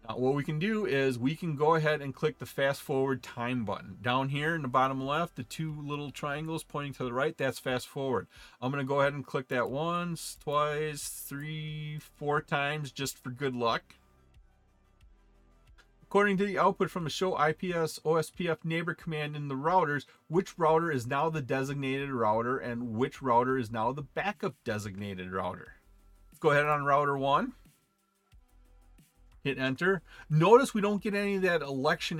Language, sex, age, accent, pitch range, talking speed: English, male, 40-59, American, 120-155 Hz, 175 wpm